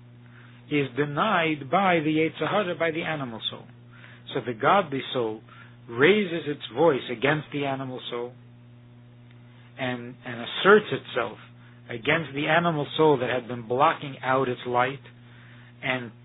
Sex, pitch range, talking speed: male, 120-160 Hz, 135 wpm